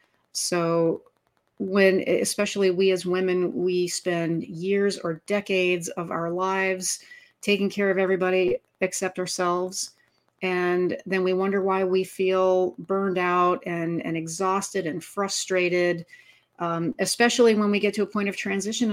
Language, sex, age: English, female, 40-59